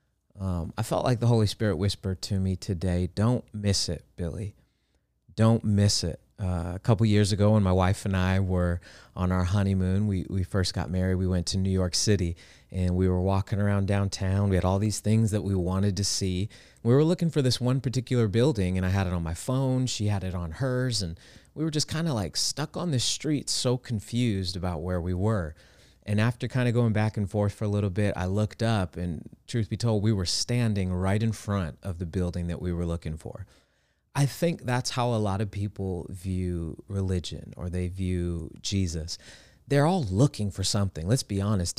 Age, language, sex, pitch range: 30-49, English, male, 90-110 Hz